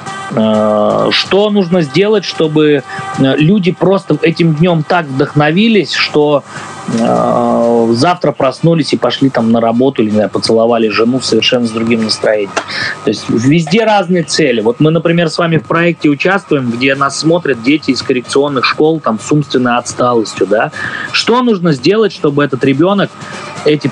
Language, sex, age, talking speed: Russian, male, 20-39, 140 wpm